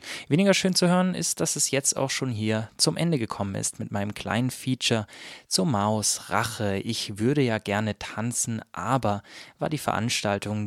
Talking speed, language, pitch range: 175 wpm, German, 100-130 Hz